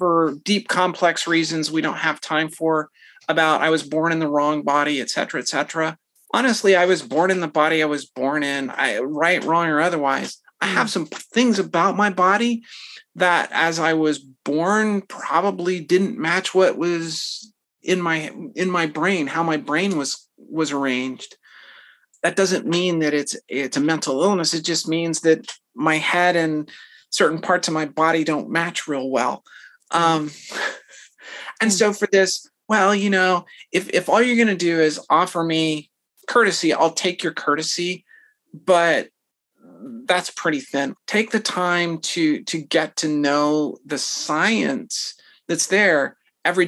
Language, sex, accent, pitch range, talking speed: English, male, American, 155-185 Hz, 165 wpm